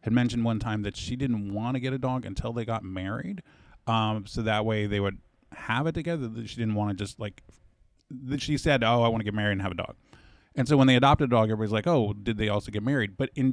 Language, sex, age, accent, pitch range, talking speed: English, male, 20-39, American, 110-135 Hz, 265 wpm